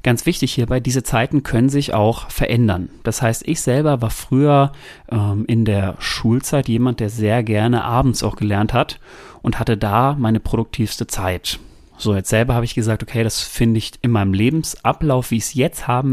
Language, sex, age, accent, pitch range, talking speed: German, male, 30-49, German, 110-135 Hz, 190 wpm